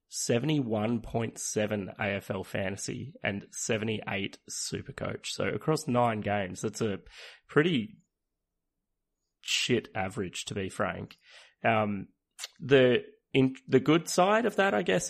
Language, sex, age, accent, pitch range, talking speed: English, male, 20-39, Australian, 105-125 Hz, 115 wpm